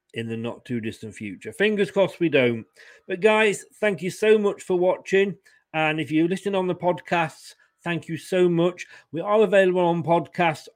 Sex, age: male, 40-59